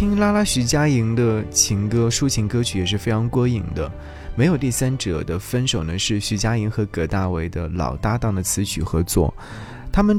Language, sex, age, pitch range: Chinese, male, 20-39, 90-115 Hz